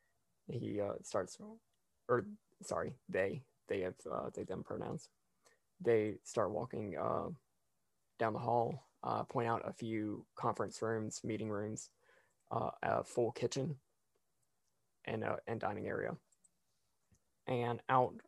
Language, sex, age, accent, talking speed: English, male, 20-39, American, 130 wpm